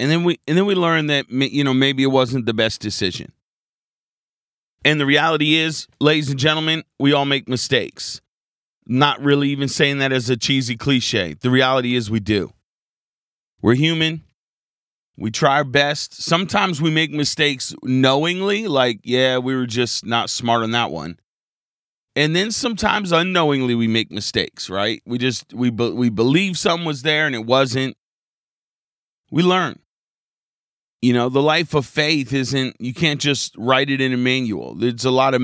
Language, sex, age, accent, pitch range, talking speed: English, male, 30-49, American, 120-150 Hz, 175 wpm